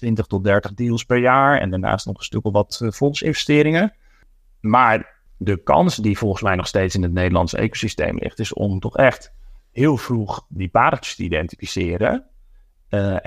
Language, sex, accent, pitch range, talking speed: Dutch, male, Dutch, 95-110 Hz, 170 wpm